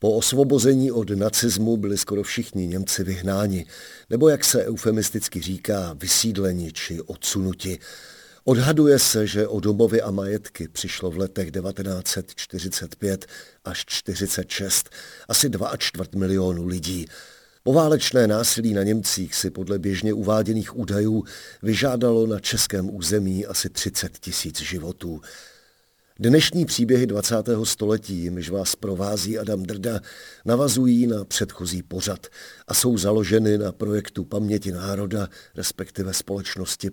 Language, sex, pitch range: Czech, male, 95-115 Hz